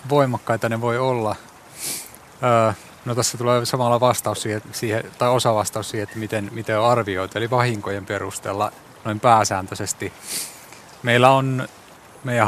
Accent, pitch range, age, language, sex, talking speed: native, 100-120 Hz, 30-49, Finnish, male, 130 wpm